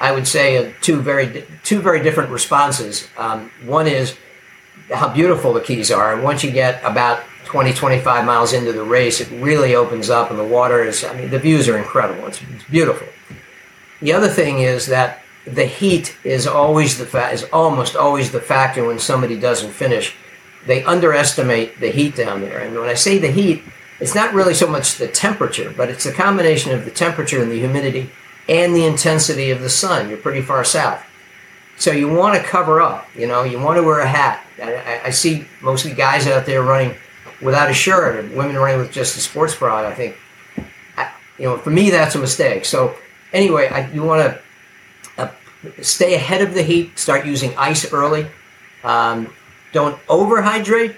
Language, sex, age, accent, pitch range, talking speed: English, male, 50-69, American, 125-160 Hz, 195 wpm